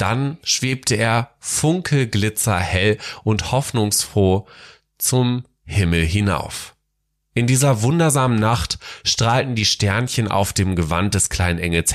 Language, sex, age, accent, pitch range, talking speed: German, male, 30-49, German, 95-125 Hz, 110 wpm